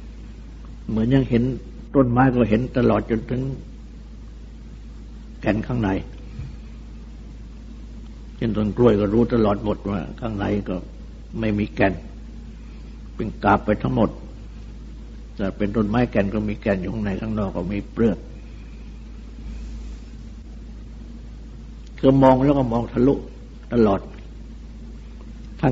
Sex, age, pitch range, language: male, 60-79, 100-125 Hz, Thai